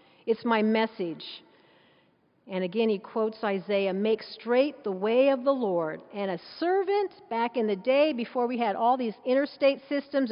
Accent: American